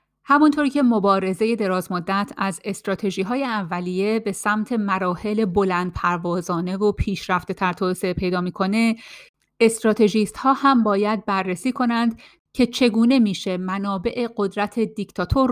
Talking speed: 110 wpm